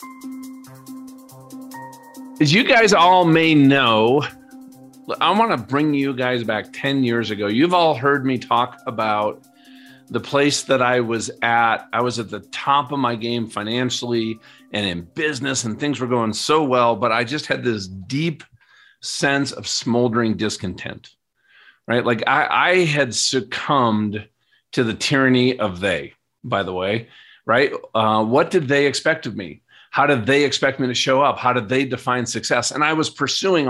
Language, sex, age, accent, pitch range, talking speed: English, male, 40-59, American, 115-140 Hz, 170 wpm